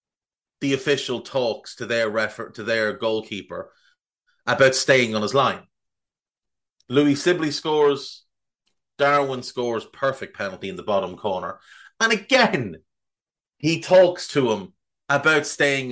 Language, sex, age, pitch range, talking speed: English, male, 30-49, 110-155 Hz, 125 wpm